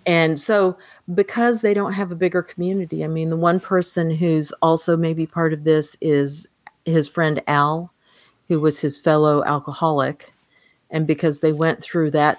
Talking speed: 170 wpm